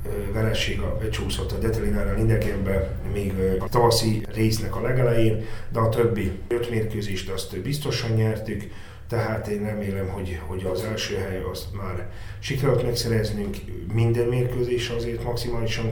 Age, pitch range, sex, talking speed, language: 30-49, 95-115 Hz, male, 135 wpm, Hungarian